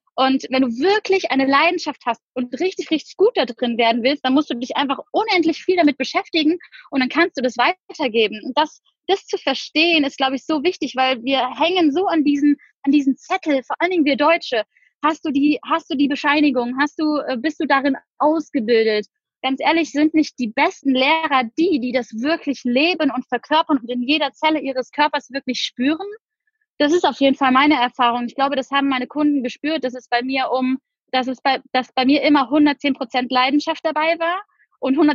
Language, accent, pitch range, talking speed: German, German, 260-320 Hz, 205 wpm